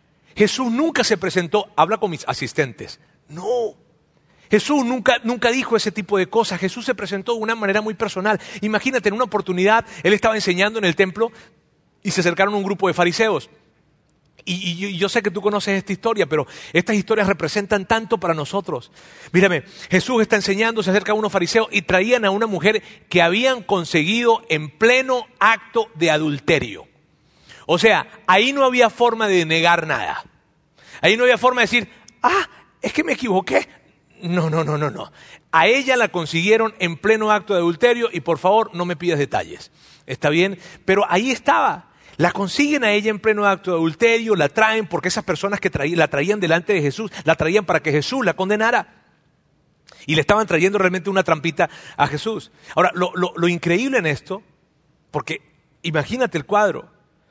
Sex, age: male, 40-59